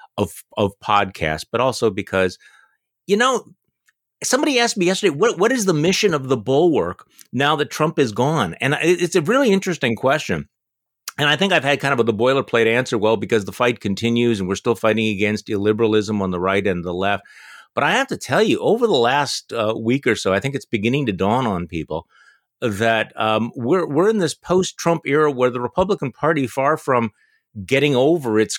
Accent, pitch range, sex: American, 105-145 Hz, male